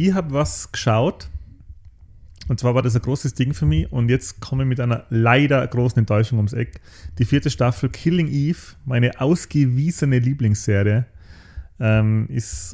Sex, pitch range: male, 100-135 Hz